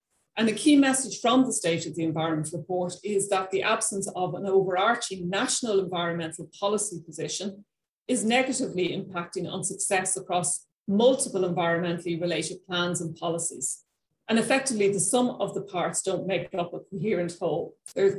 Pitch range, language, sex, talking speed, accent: 175-225 Hz, English, female, 160 wpm, Irish